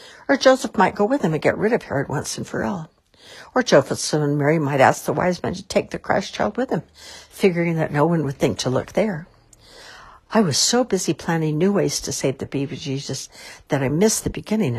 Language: English